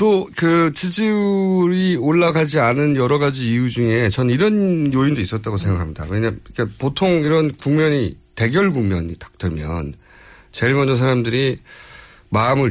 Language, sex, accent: Korean, male, native